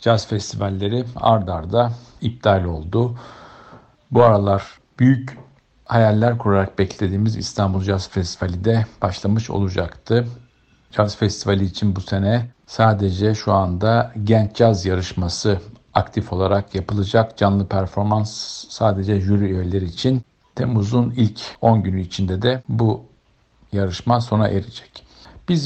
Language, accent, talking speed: Turkish, native, 110 wpm